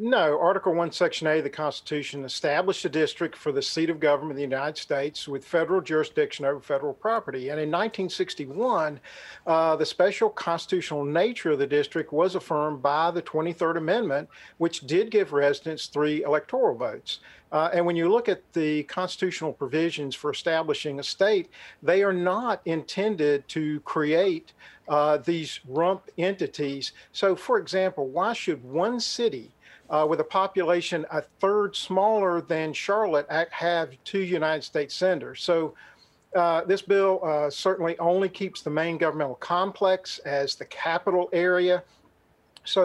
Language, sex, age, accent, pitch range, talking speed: English, male, 50-69, American, 150-185 Hz, 155 wpm